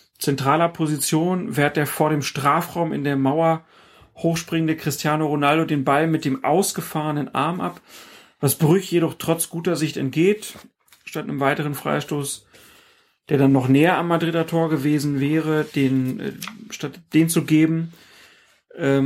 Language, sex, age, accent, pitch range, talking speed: German, male, 40-59, German, 140-165 Hz, 140 wpm